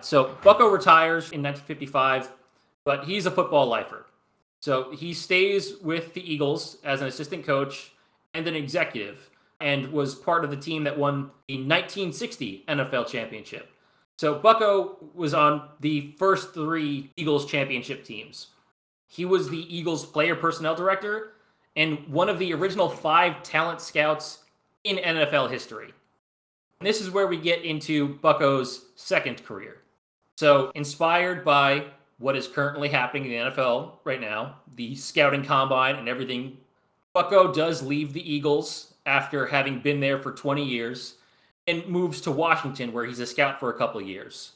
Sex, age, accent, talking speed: male, 20-39, American, 155 wpm